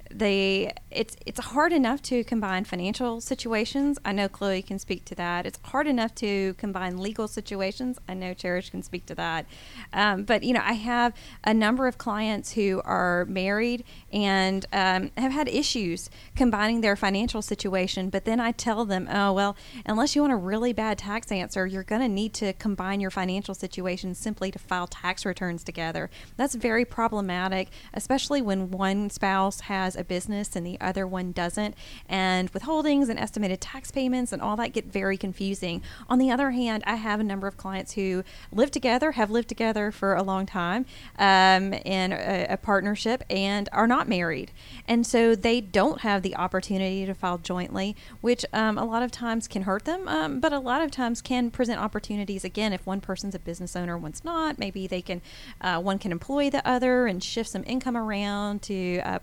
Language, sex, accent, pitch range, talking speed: English, female, American, 190-235 Hz, 195 wpm